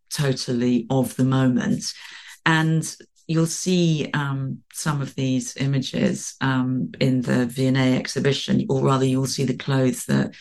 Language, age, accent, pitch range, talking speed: English, 40-59, British, 130-160 Hz, 140 wpm